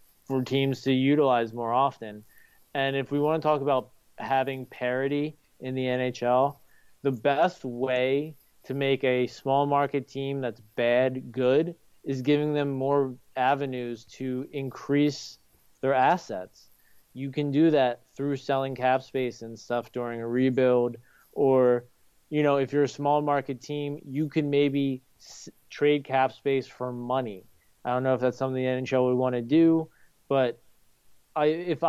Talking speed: 155 wpm